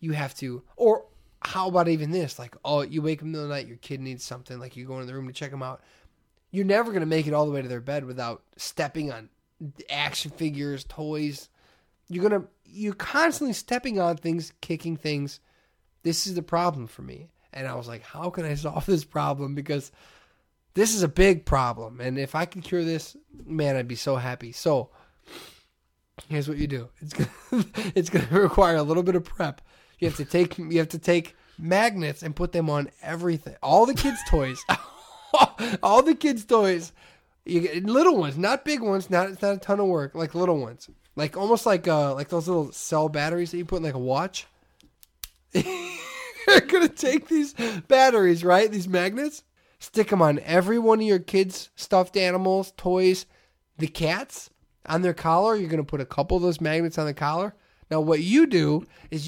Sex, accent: male, American